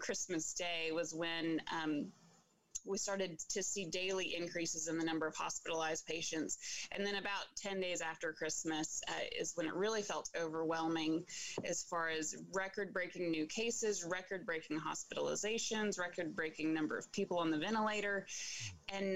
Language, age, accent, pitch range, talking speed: English, 20-39, American, 165-215 Hz, 145 wpm